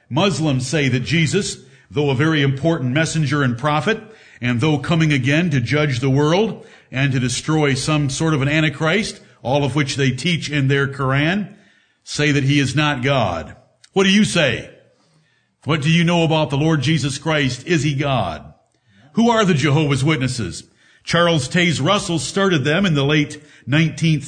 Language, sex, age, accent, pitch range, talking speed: English, male, 50-69, American, 140-175 Hz, 175 wpm